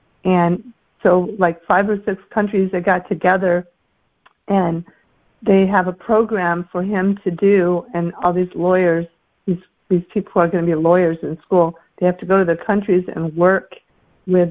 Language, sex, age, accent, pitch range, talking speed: English, female, 50-69, American, 180-205 Hz, 180 wpm